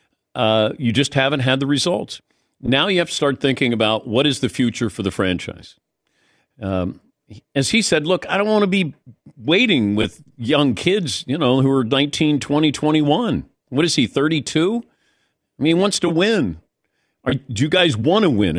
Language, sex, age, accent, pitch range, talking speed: English, male, 50-69, American, 105-145 Hz, 190 wpm